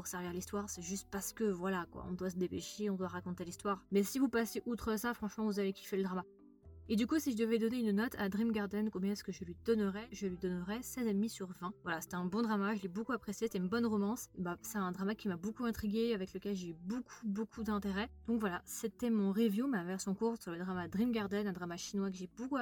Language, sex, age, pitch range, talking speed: French, female, 20-39, 195-230 Hz, 265 wpm